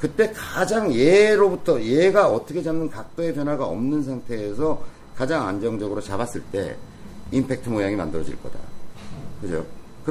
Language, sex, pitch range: Korean, male, 100-155 Hz